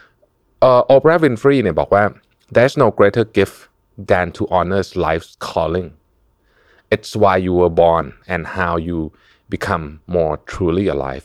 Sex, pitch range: male, 85-115 Hz